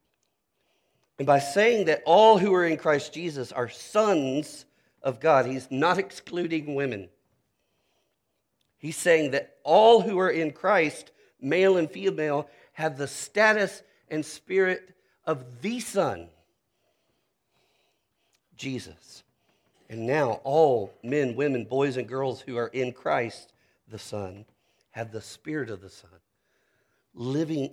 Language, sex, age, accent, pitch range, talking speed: English, male, 50-69, American, 110-150 Hz, 130 wpm